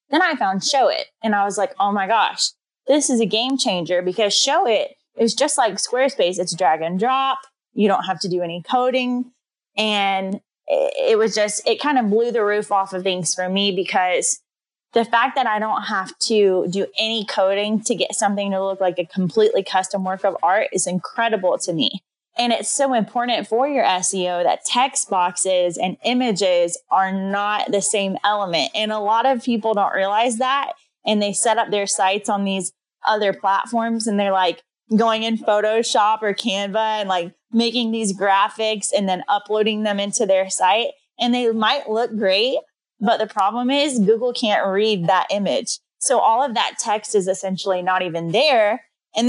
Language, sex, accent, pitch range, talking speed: English, female, American, 195-235 Hz, 190 wpm